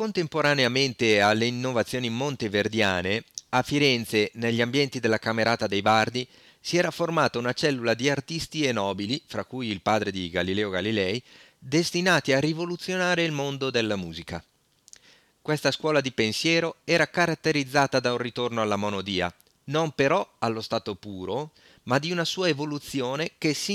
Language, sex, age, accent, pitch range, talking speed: Italian, male, 40-59, native, 105-145 Hz, 145 wpm